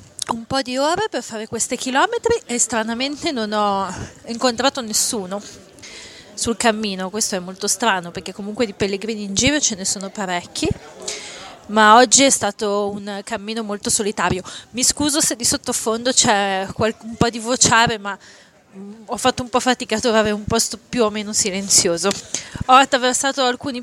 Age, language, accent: 30-49, Italian, native